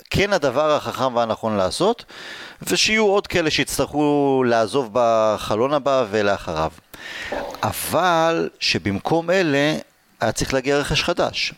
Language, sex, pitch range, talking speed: Hebrew, male, 110-165 Hz, 110 wpm